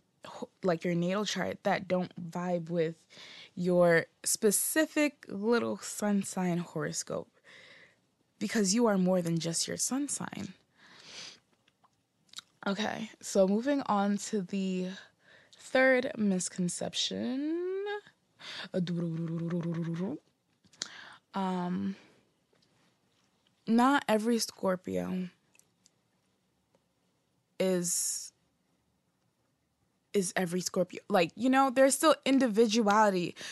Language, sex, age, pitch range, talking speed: English, female, 20-39, 180-225 Hz, 80 wpm